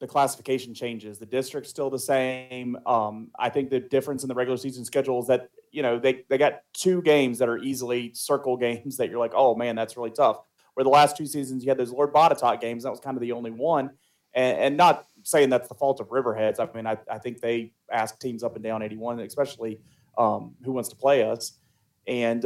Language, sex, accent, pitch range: English, male, American, 120-145 Hz